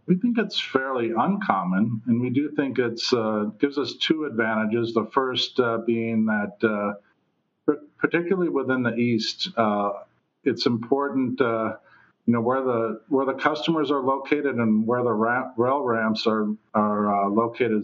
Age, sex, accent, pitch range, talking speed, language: 50-69, male, American, 105-120 Hz, 160 wpm, English